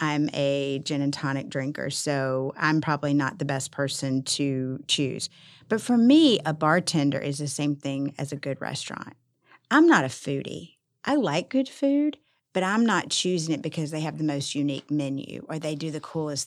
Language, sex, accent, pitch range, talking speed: English, female, American, 140-165 Hz, 195 wpm